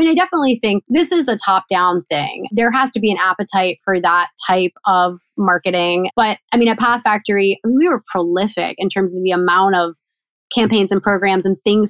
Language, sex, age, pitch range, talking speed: English, female, 20-39, 185-240 Hz, 205 wpm